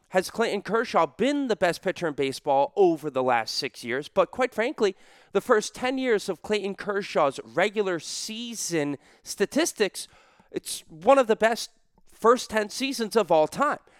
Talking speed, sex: 165 wpm, male